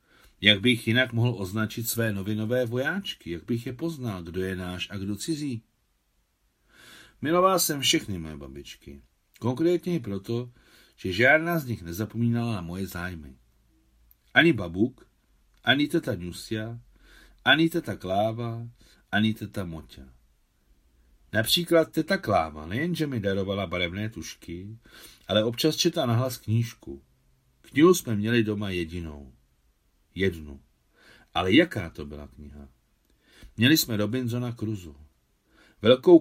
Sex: male